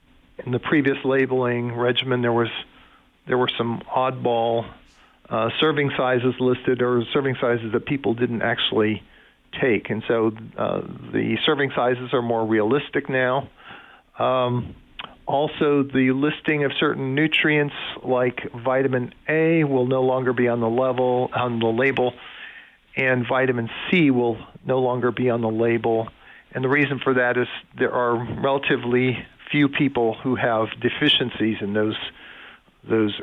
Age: 50-69